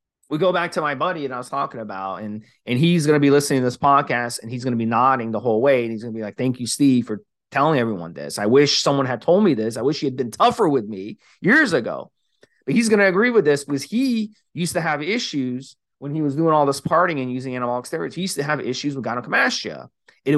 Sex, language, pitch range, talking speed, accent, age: male, English, 120-155 Hz, 270 wpm, American, 30-49